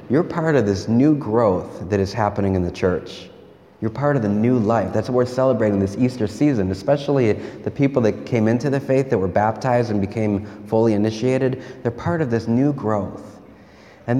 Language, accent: English, American